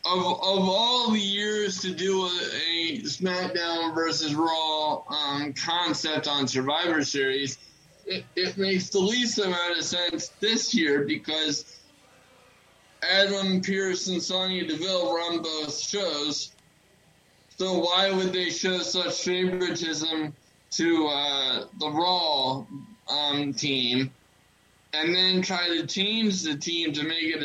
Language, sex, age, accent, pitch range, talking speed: English, male, 20-39, American, 150-185 Hz, 130 wpm